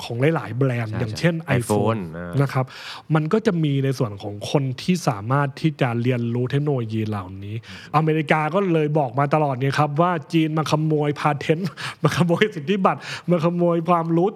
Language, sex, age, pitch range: Thai, male, 20-39, 130-170 Hz